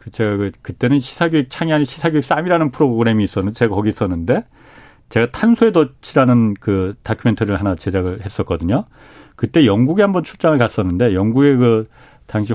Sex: male